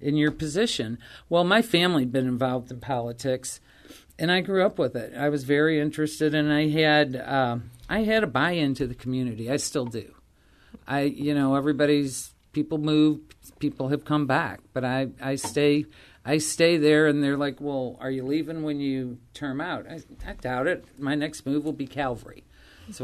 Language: English